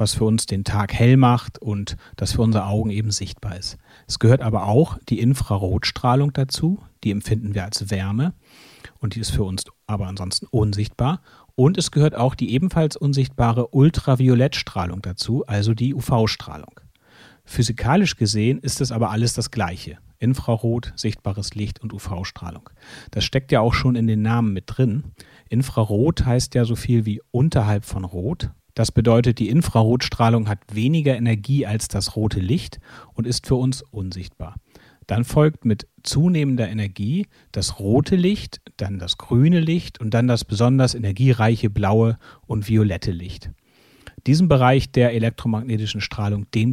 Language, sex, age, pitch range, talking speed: German, male, 40-59, 105-130 Hz, 155 wpm